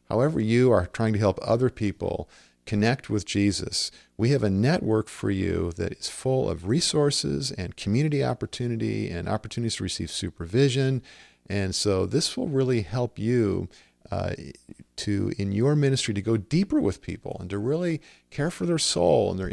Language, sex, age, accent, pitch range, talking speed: English, male, 50-69, American, 100-140 Hz, 170 wpm